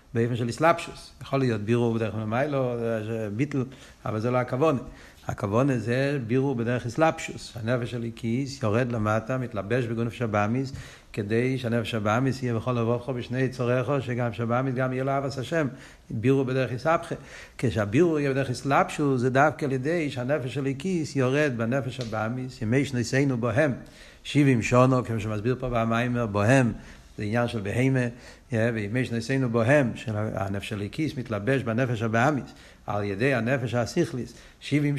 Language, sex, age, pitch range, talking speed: Hebrew, male, 60-79, 115-150 Hz, 150 wpm